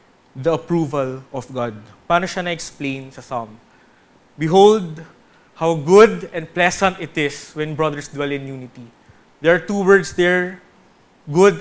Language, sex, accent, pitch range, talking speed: English, male, Filipino, 135-180 Hz, 135 wpm